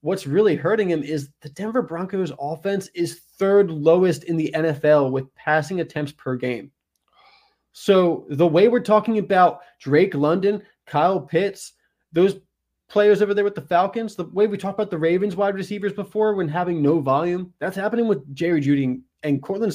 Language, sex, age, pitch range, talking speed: English, male, 20-39, 145-185 Hz, 175 wpm